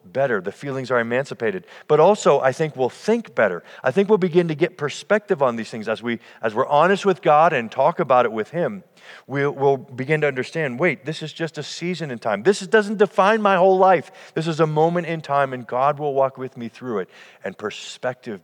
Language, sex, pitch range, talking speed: English, male, 110-150 Hz, 230 wpm